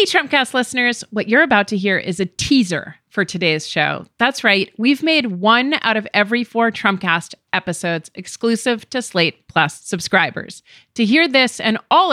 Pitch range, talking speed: 185-260 Hz, 175 wpm